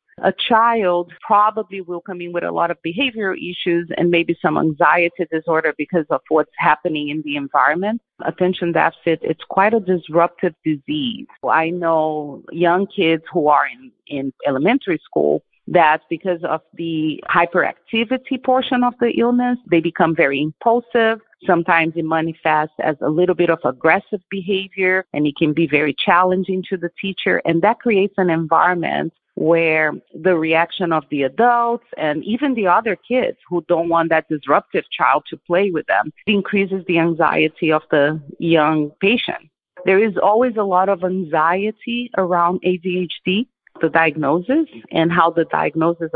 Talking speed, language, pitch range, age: 155 wpm, English, 160-195 Hz, 40-59